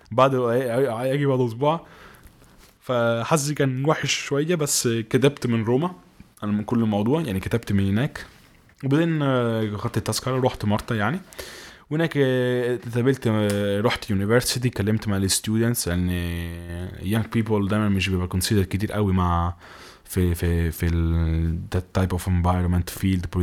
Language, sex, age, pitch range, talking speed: Arabic, male, 20-39, 95-120 Hz, 145 wpm